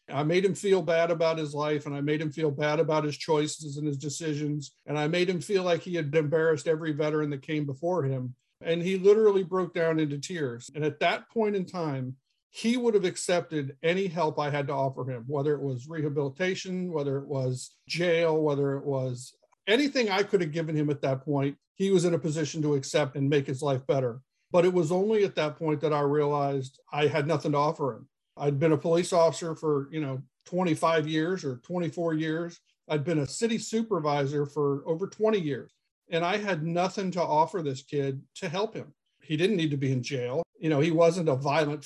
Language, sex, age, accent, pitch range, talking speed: English, male, 50-69, American, 140-170 Hz, 220 wpm